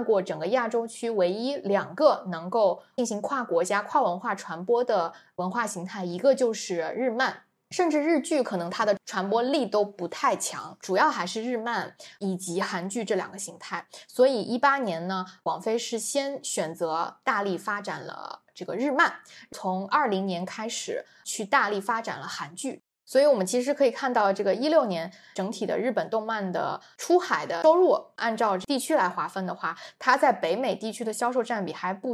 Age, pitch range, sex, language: 20-39, 185-245 Hz, female, Chinese